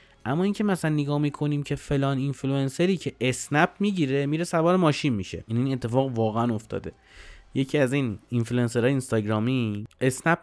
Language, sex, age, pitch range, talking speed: Persian, male, 30-49, 120-165 Hz, 150 wpm